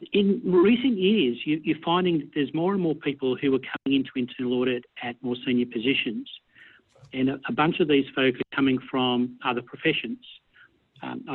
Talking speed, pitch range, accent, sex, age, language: 185 wpm, 125-155 Hz, Australian, male, 50-69, English